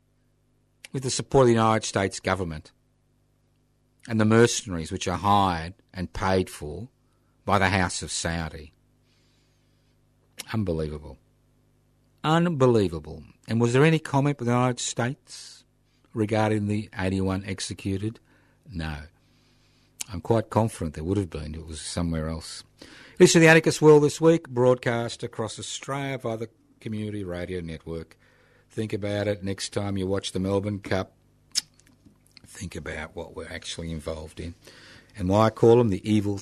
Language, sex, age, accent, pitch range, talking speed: English, male, 50-69, Australian, 90-125 Hz, 145 wpm